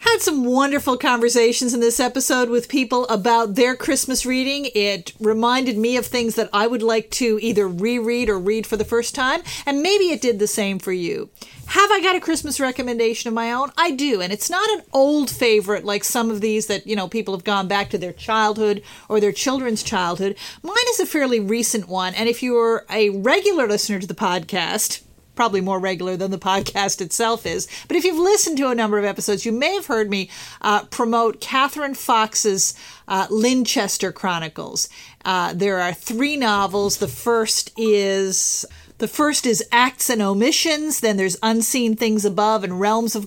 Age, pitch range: 40-59, 205-255 Hz